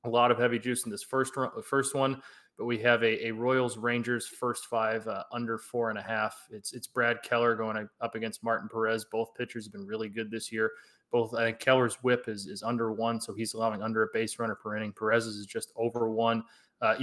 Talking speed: 240 wpm